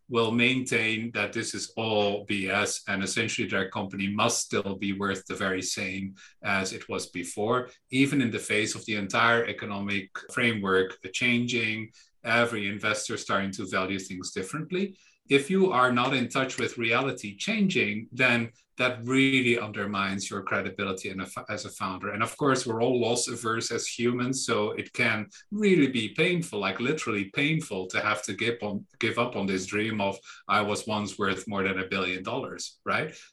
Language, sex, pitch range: English, male, 100-120 Hz